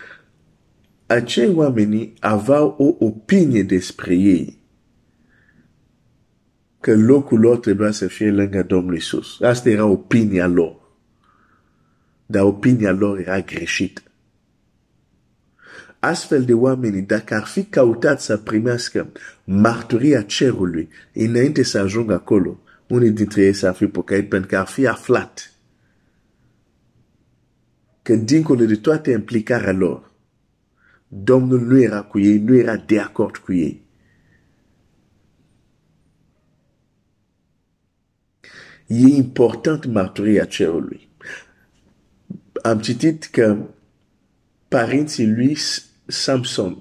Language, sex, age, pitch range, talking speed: Romanian, male, 50-69, 105-130 Hz, 100 wpm